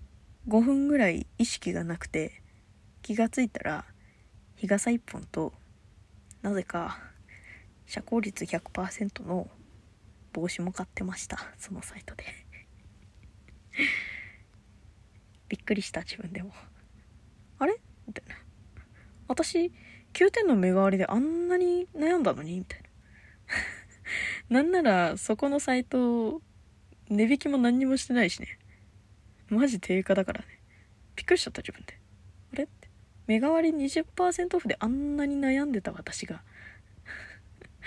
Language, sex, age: Japanese, female, 20-39